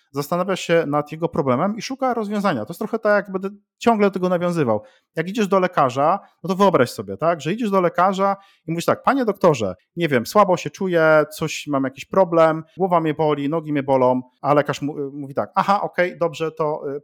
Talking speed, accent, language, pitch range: 215 wpm, native, Polish, 145-190 Hz